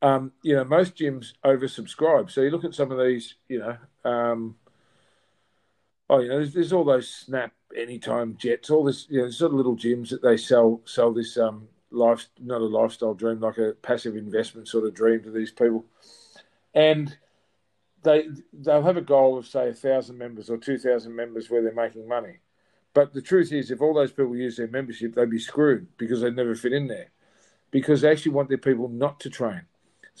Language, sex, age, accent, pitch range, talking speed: English, male, 40-59, Australian, 115-140 Hz, 200 wpm